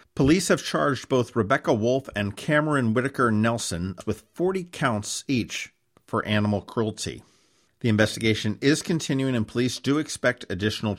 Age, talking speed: 50-69, 140 wpm